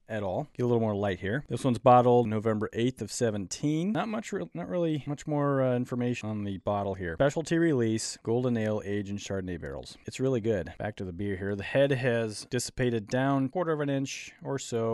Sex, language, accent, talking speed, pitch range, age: male, English, American, 215 wpm, 105-135 Hz, 30-49